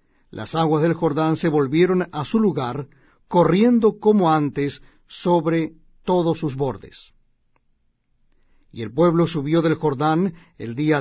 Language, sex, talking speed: Spanish, male, 130 wpm